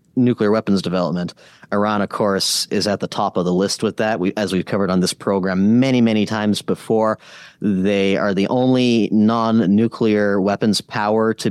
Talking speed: 170 wpm